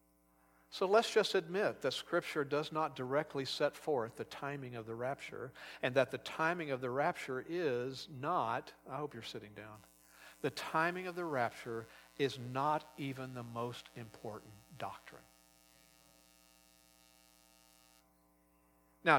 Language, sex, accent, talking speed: English, male, American, 135 wpm